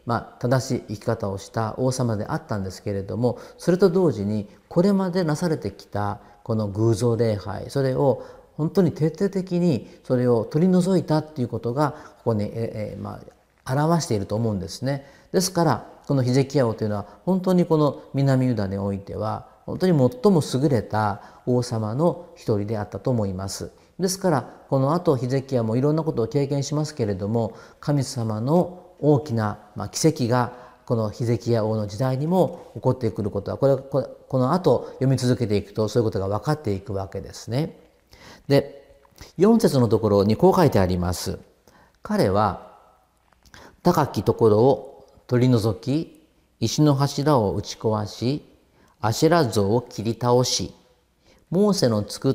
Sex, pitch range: male, 105-150 Hz